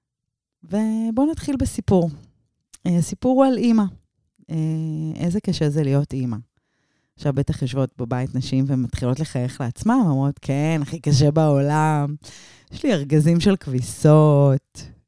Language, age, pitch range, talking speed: Hebrew, 20-39, 135-170 Hz, 120 wpm